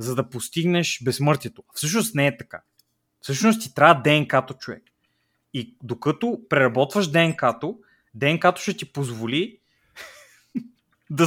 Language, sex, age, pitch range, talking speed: Bulgarian, male, 20-39, 125-165 Hz, 120 wpm